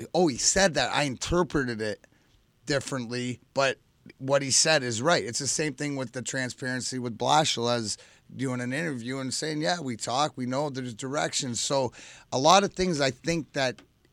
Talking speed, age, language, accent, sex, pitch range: 185 wpm, 30-49, English, American, male, 120-145 Hz